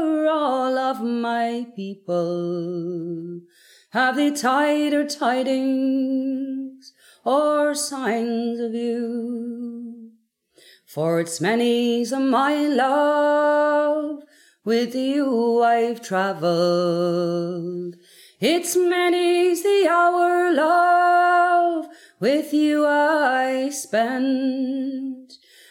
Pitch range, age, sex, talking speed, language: 230-300 Hz, 30-49, female, 70 wpm, English